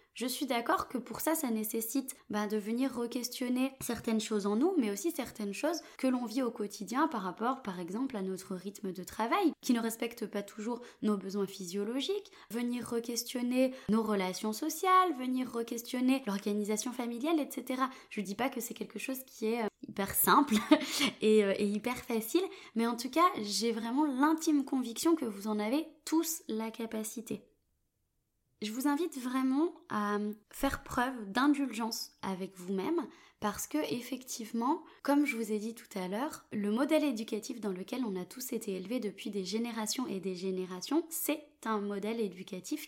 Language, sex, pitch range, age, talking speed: French, female, 215-290 Hz, 20-39, 175 wpm